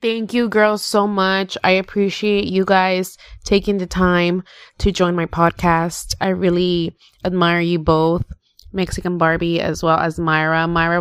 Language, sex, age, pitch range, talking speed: English, female, 20-39, 165-190 Hz, 155 wpm